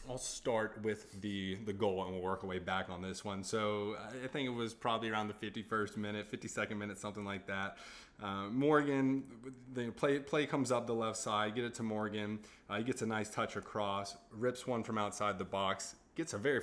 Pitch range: 100-130 Hz